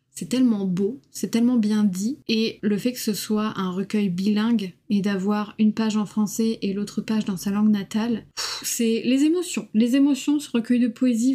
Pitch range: 205-240 Hz